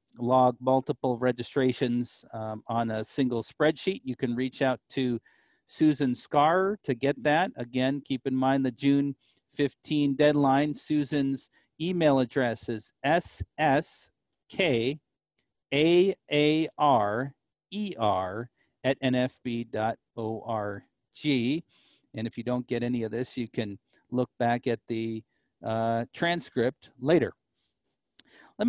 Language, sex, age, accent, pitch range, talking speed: English, male, 50-69, American, 125-170 Hz, 105 wpm